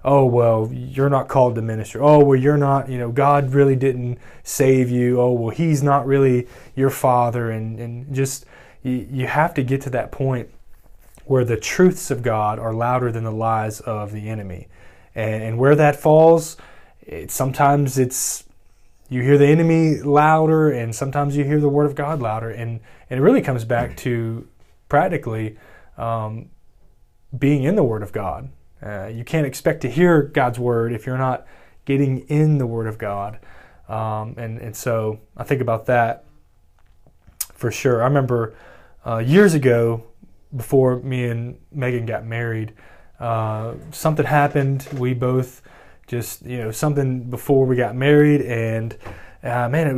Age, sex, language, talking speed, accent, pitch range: 20-39, male, English, 170 wpm, American, 115-140 Hz